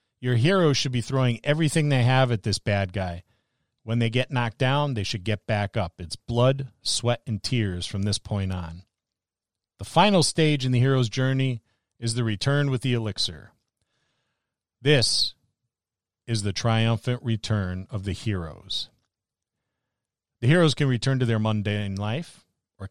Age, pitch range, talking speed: 40-59, 100-130 Hz, 160 wpm